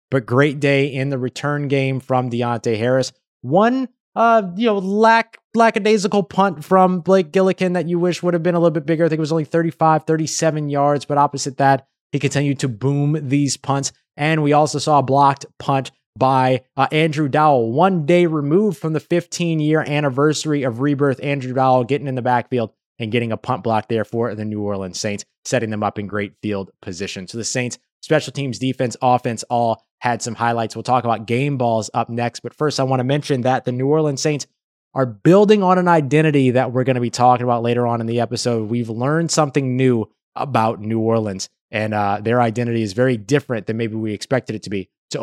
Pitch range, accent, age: 120-160 Hz, American, 20-39